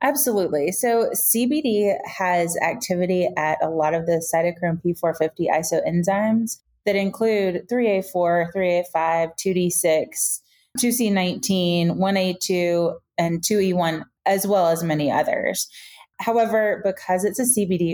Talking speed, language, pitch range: 105 wpm, English, 165-200 Hz